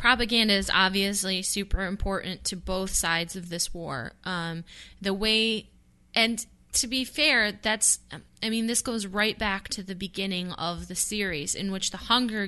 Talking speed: 170 wpm